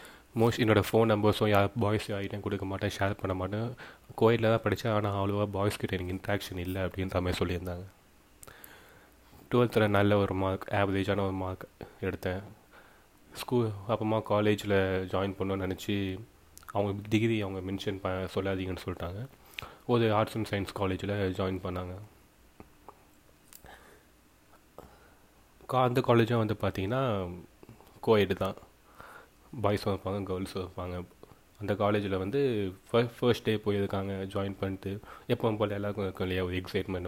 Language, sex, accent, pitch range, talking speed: Tamil, male, native, 95-105 Hz, 125 wpm